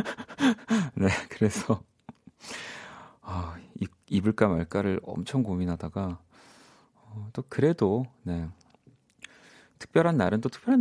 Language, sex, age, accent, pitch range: Korean, male, 40-59, native, 95-135 Hz